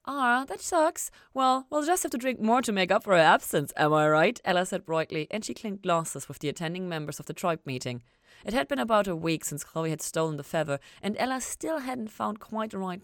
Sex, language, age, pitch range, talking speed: female, English, 30-49, 135-200 Hz, 250 wpm